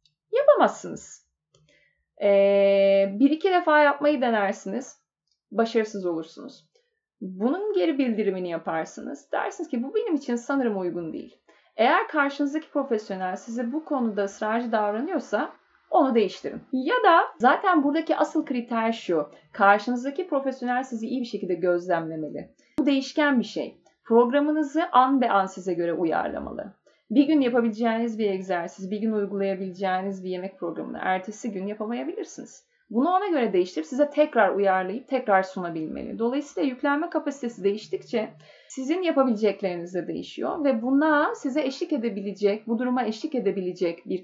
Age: 30-49